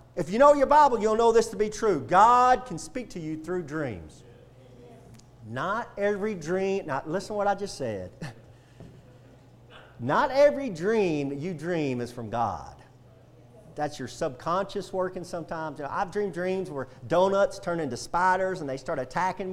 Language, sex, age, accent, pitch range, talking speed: English, male, 40-59, American, 130-210 Hz, 165 wpm